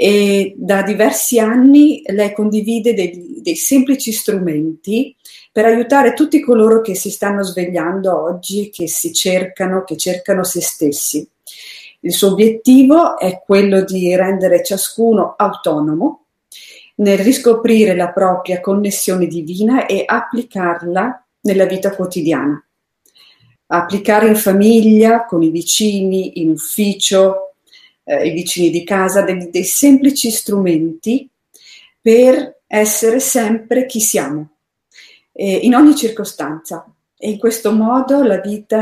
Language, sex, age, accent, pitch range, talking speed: French, female, 40-59, Italian, 180-235 Hz, 120 wpm